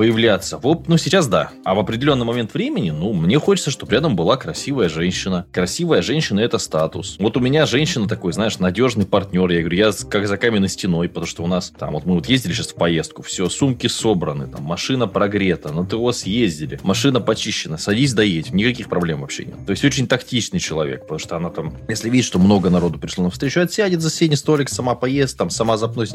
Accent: native